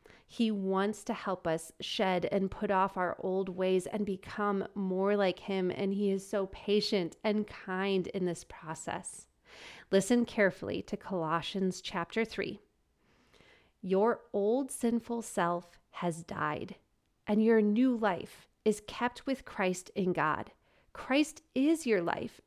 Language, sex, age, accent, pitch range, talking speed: English, female, 30-49, American, 185-230 Hz, 140 wpm